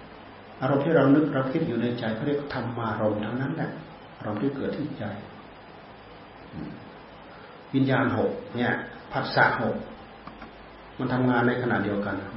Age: 40-59